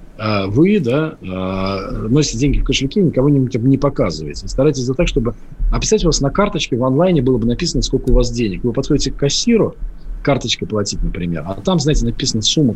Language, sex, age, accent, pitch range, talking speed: Russian, male, 40-59, native, 115-155 Hz, 185 wpm